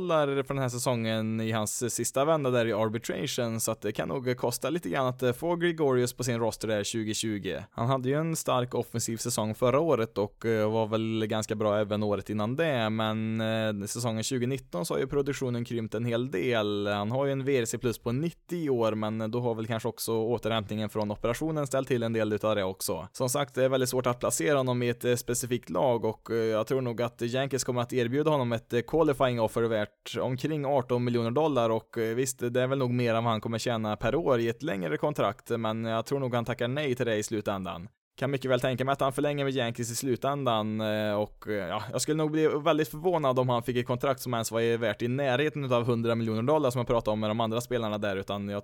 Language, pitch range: Swedish, 110-130 Hz